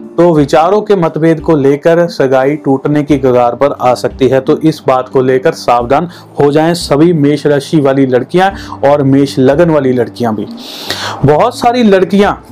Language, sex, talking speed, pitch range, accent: Hindi, male, 175 wpm, 135-170 Hz, native